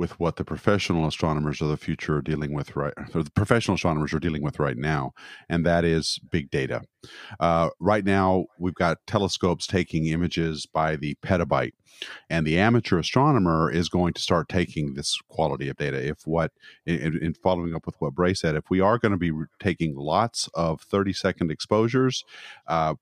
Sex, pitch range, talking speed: male, 75-95 Hz, 190 wpm